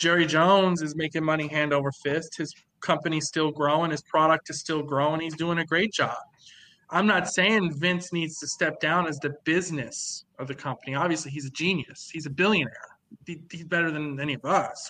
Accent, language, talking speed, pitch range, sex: American, English, 200 wpm, 145-175 Hz, male